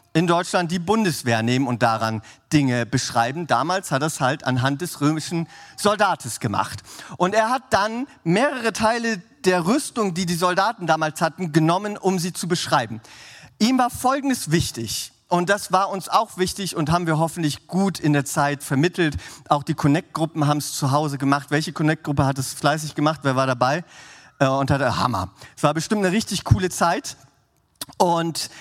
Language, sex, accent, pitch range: German, male, German, 140-195 Hz